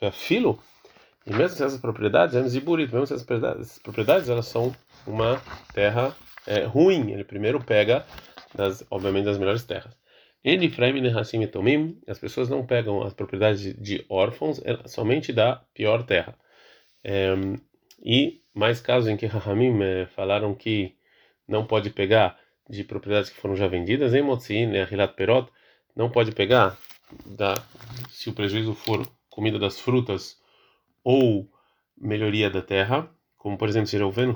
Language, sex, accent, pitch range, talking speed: Portuguese, male, Brazilian, 100-120 Hz, 155 wpm